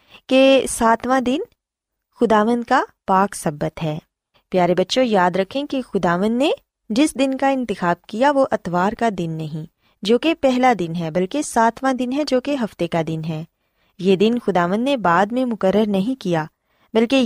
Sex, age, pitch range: female, 20-39, 180-250 Hz